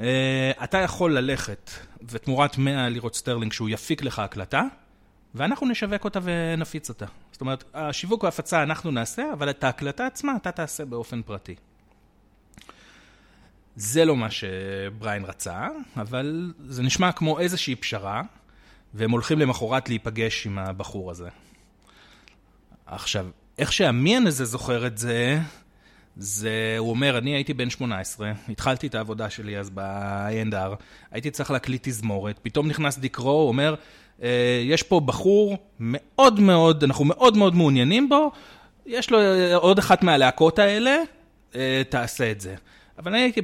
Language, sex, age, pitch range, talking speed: Hebrew, male, 30-49, 110-170 Hz, 140 wpm